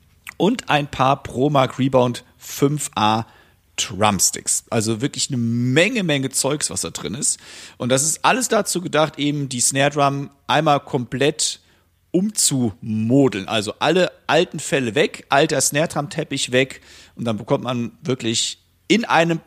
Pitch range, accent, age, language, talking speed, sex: 115-155 Hz, German, 40-59, German, 145 wpm, male